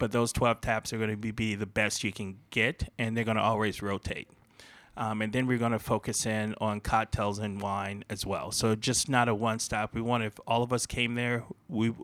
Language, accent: English, American